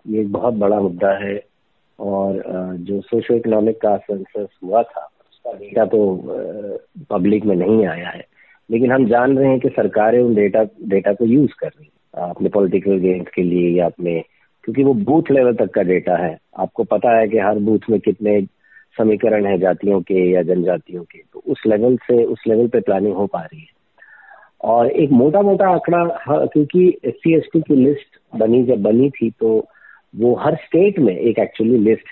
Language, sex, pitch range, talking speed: Hindi, male, 105-150 Hz, 185 wpm